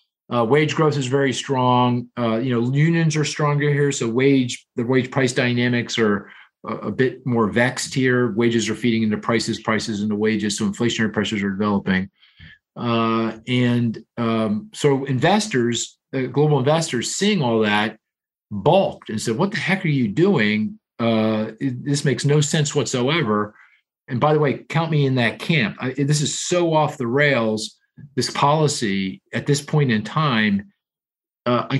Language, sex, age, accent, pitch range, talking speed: English, male, 40-59, American, 115-150 Hz, 165 wpm